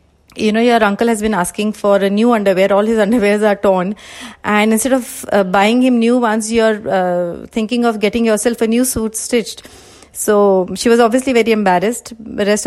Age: 30-49